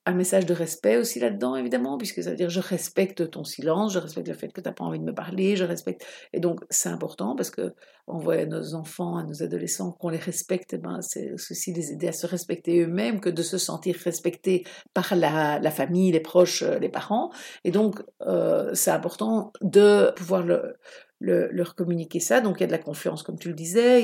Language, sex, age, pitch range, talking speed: French, female, 60-79, 170-215 Hz, 230 wpm